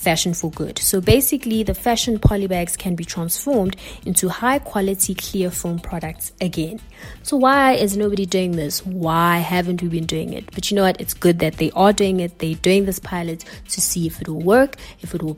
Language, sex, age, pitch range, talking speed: English, female, 20-39, 170-205 Hz, 215 wpm